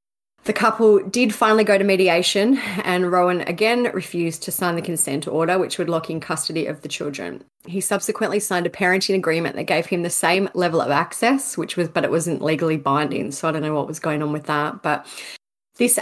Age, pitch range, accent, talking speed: 30-49, 160-190 Hz, Australian, 215 wpm